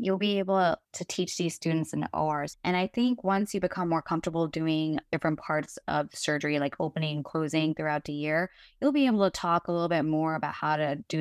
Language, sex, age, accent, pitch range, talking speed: English, female, 20-39, American, 155-180 Hz, 225 wpm